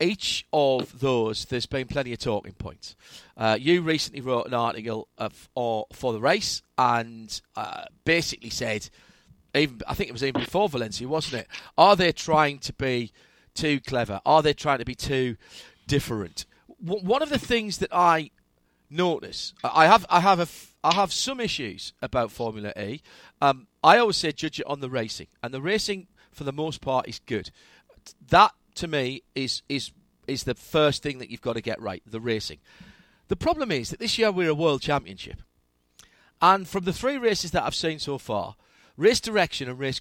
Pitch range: 125-175 Hz